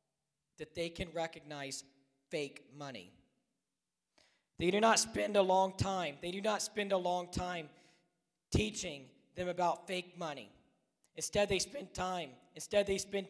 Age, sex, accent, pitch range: 40-59, male, American, 160-190 Hz